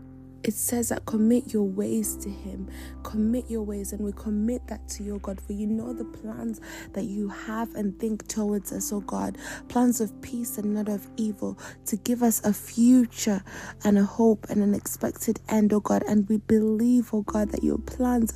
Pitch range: 205-230 Hz